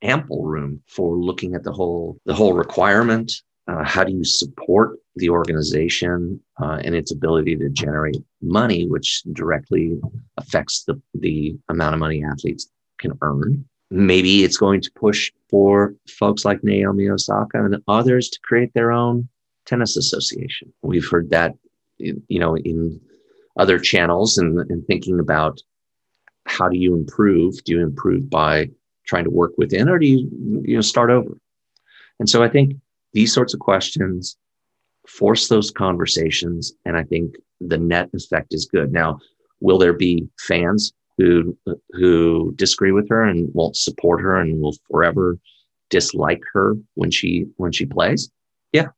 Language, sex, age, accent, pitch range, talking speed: English, male, 30-49, American, 85-105 Hz, 160 wpm